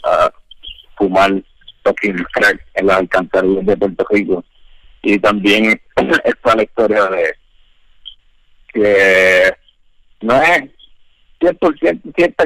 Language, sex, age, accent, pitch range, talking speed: Spanish, male, 50-69, Indian, 95-120 Hz, 100 wpm